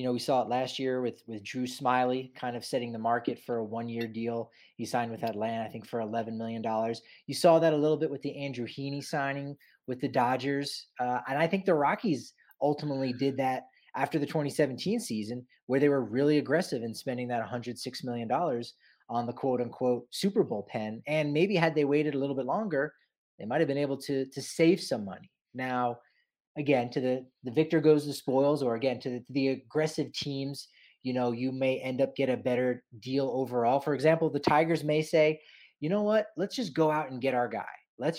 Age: 30-49